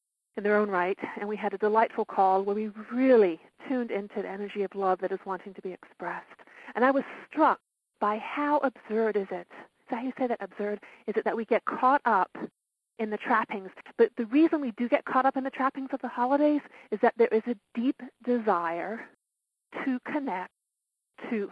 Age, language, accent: 40-59, English, American